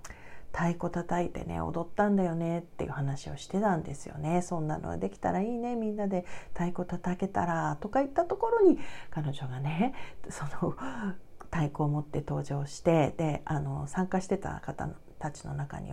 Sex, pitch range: female, 155-230 Hz